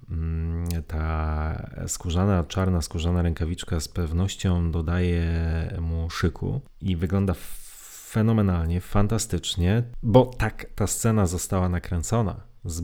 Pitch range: 85-105 Hz